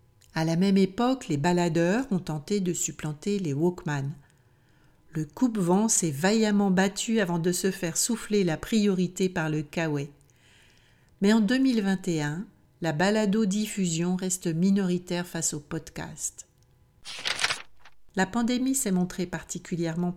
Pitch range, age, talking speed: 160-205 Hz, 60-79, 125 wpm